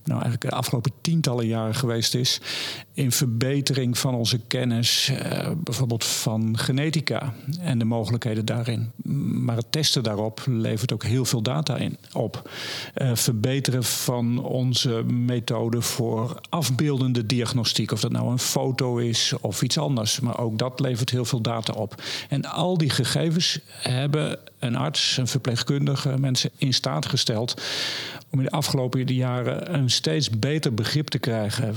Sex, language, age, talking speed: male, Dutch, 50-69, 150 wpm